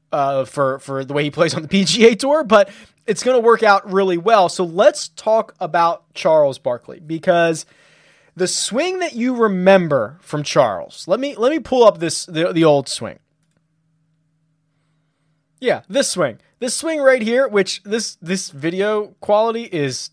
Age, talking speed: 20-39, 170 wpm